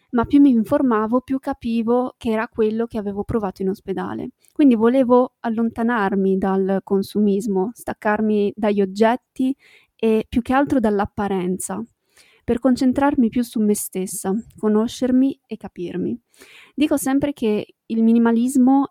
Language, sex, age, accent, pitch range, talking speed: Italian, female, 20-39, native, 205-240 Hz, 130 wpm